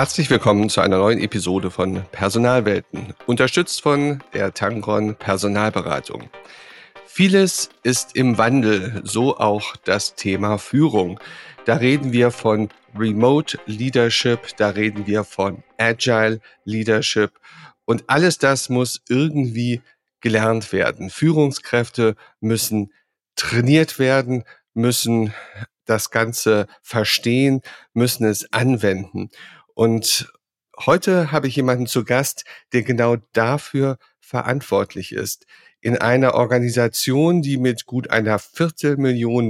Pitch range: 110-135 Hz